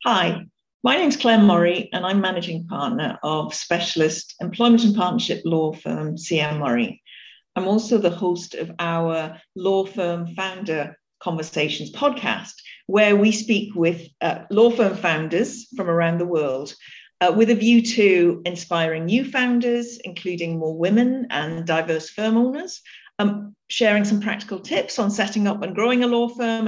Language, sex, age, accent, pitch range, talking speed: English, female, 50-69, British, 165-220 Hz, 155 wpm